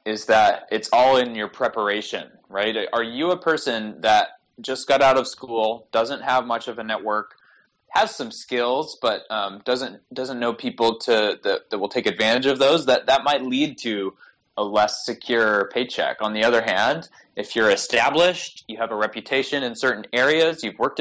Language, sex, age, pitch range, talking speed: English, male, 20-39, 105-135 Hz, 190 wpm